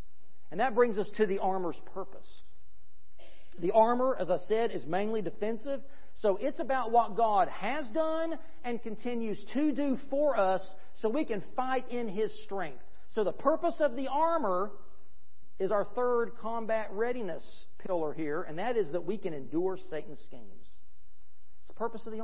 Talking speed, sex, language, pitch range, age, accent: 170 wpm, male, English, 185-245 Hz, 40-59, American